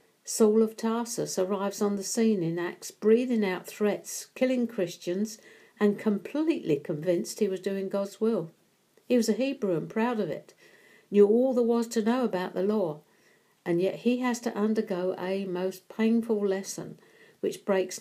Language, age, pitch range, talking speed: English, 60-79, 170-215 Hz, 170 wpm